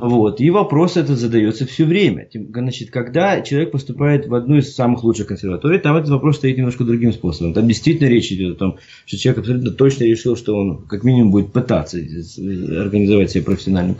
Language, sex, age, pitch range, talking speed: English, male, 20-39, 105-150 Hz, 190 wpm